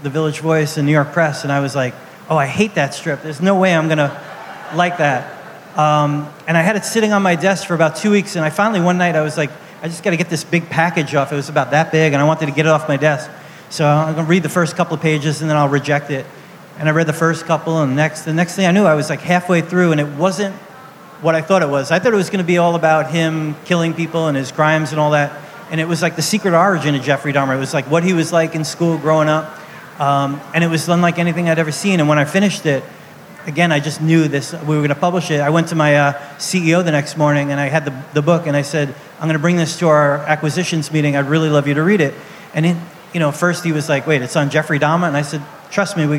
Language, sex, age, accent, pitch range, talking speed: English, male, 30-49, American, 150-175 Hz, 295 wpm